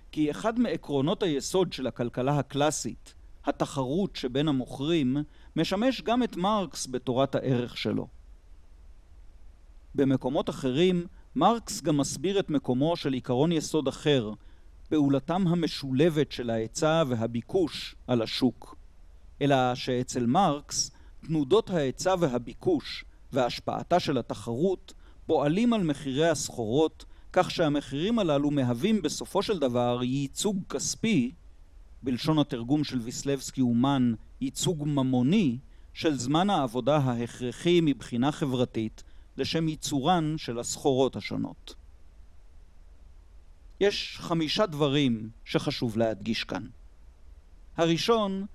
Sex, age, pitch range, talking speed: male, 50-69, 120-165 Hz, 100 wpm